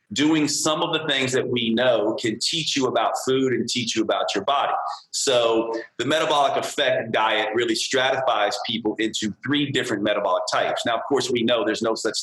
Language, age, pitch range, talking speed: English, 40-59, 115-155 Hz, 195 wpm